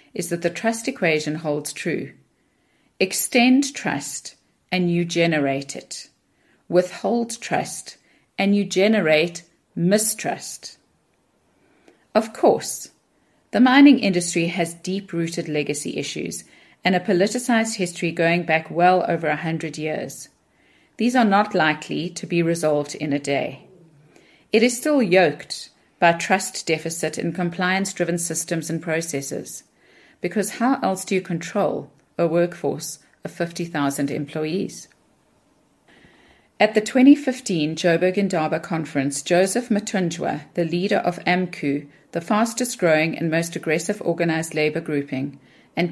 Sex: female